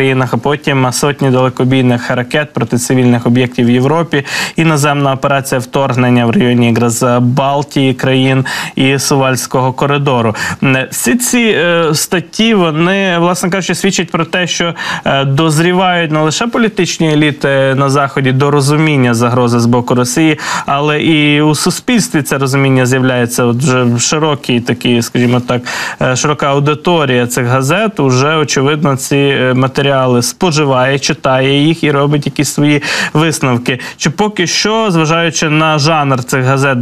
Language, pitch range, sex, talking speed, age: Ukrainian, 130-155 Hz, male, 135 wpm, 20-39